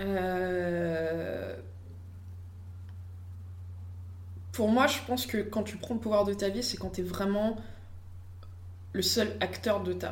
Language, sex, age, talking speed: French, female, 20-39, 140 wpm